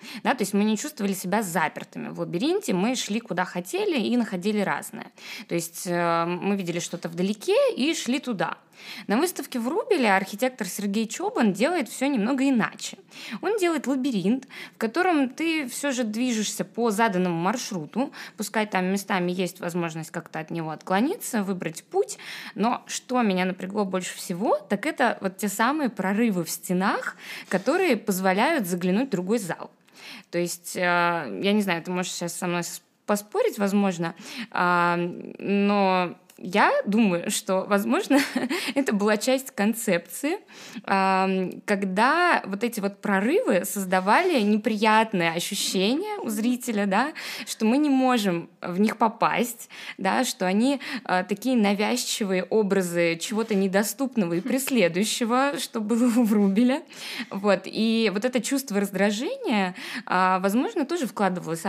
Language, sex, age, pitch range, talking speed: Russian, female, 20-39, 190-255 Hz, 135 wpm